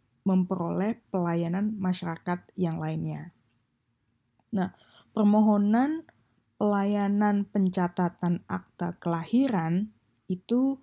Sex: female